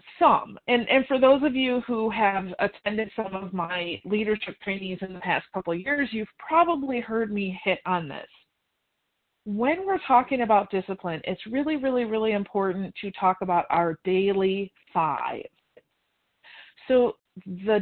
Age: 40-59